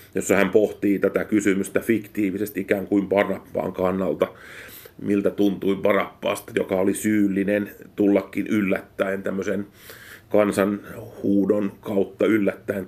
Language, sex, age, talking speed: Finnish, male, 30-49, 105 wpm